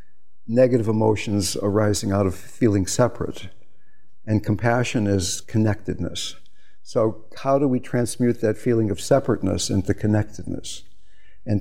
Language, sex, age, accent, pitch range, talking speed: English, male, 60-79, American, 95-120 Hz, 120 wpm